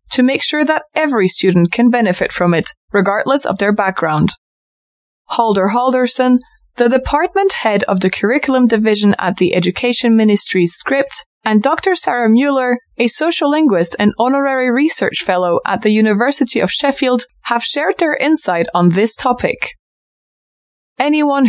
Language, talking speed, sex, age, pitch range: English, 145 wpm, female, 20-39, 190-270 Hz